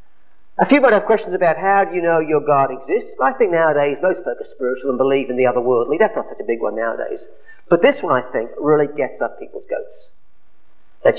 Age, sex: 40-59, male